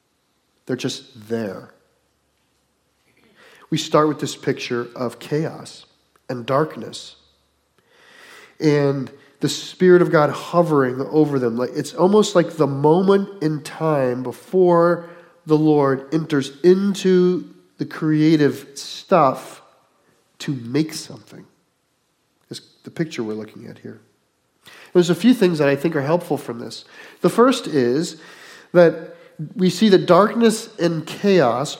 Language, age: English, 40-59